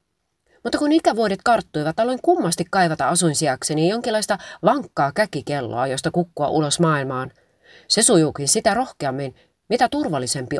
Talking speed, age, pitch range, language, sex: 130 wpm, 30-49, 140-210 Hz, Finnish, female